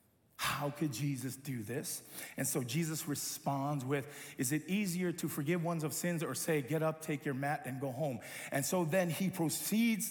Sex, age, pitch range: male, 50-69, 145-195 Hz